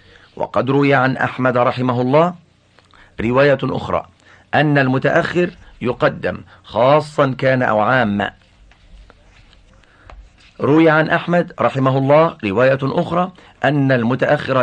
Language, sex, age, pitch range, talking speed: Arabic, male, 50-69, 115-150 Hz, 100 wpm